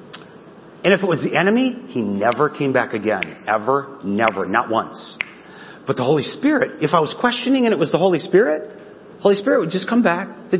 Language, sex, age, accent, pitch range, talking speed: English, male, 40-59, American, 155-215 Hz, 210 wpm